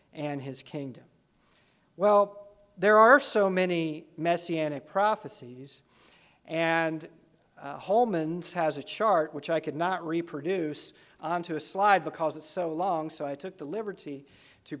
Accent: American